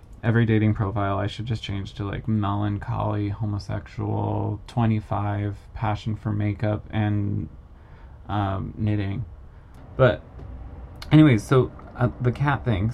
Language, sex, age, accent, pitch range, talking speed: English, male, 20-39, American, 100-115 Hz, 115 wpm